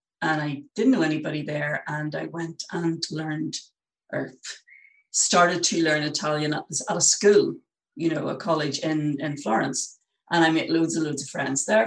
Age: 40-59